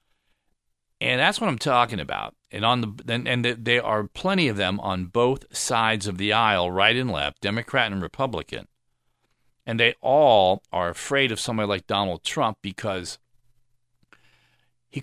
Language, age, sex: English, 40-59, male